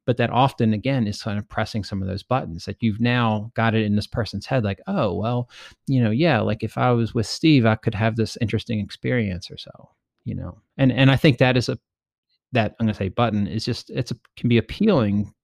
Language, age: English, 30-49